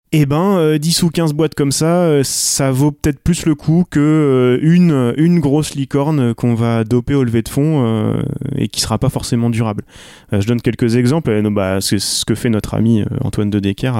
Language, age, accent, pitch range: French, 20-39, French, 110-140 Hz